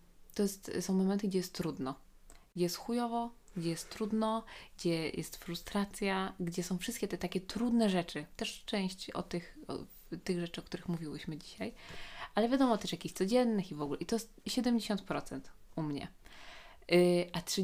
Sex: female